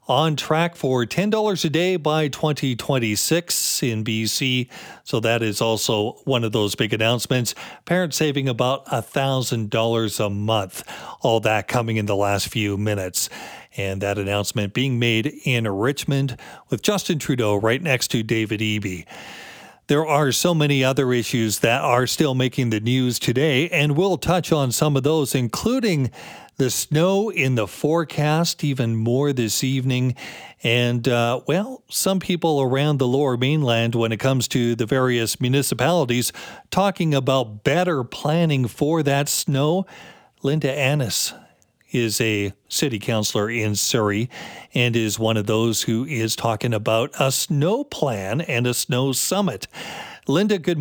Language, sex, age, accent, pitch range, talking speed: English, male, 40-59, American, 115-150 Hz, 150 wpm